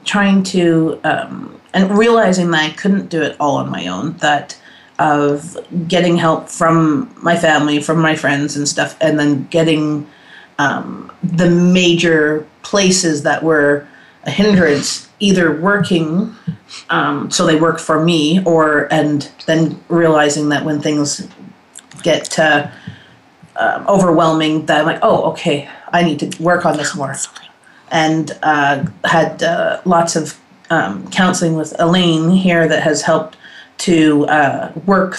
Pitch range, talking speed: 155-180 Hz, 145 wpm